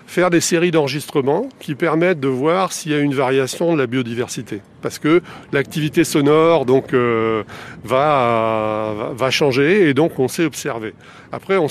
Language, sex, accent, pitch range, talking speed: French, male, French, 120-155 Hz, 165 wpm